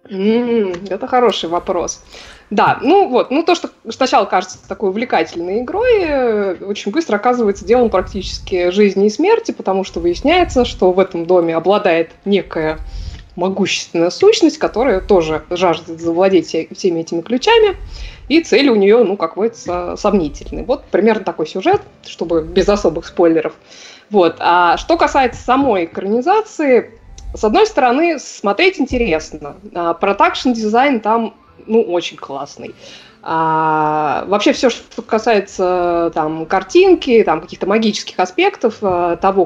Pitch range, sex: 175-255 Hz, female